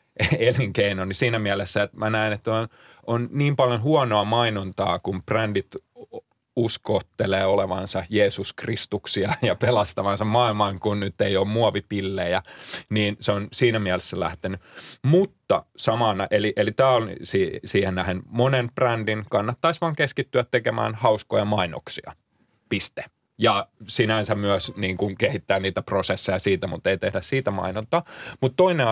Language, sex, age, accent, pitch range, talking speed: Finnish, male, 30-49, native, 100-120 Hz, 140 wpm